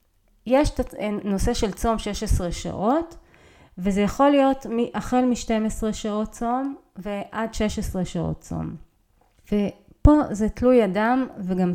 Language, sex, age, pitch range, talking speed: Hebrew, female, 30-49, 185-235 Hz, 110 wpm